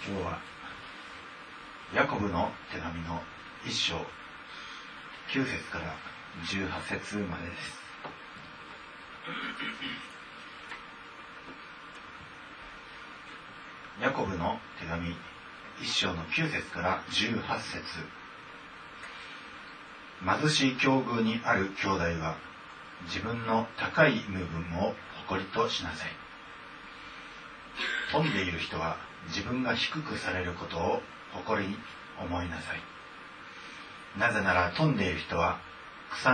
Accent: native